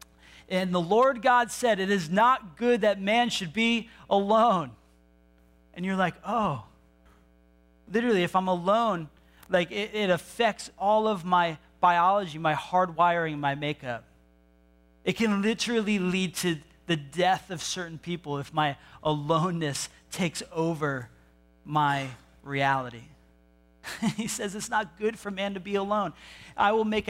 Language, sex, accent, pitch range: English, male, American, 165-210 Hz